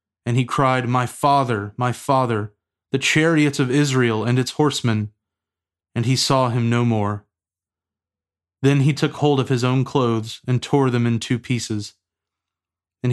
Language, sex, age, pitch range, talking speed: English, male, 20-39, 105-135 Hz, 160 wpm